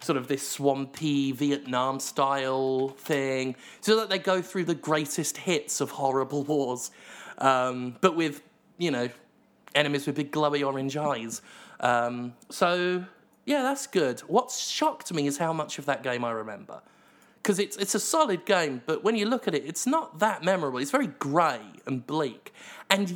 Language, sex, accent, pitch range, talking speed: English, male, British, 140-210 Hz, 170 wpm